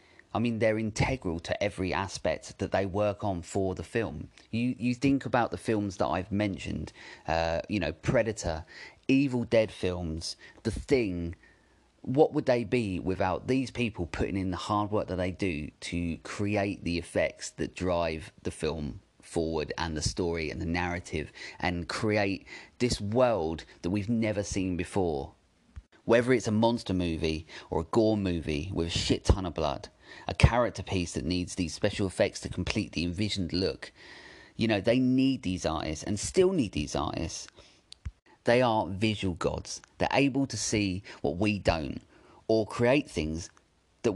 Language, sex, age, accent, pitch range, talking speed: English, male, 30-49, British, 85-115 Hz, 170 wpm